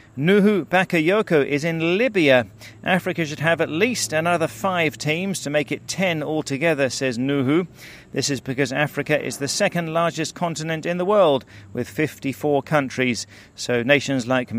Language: English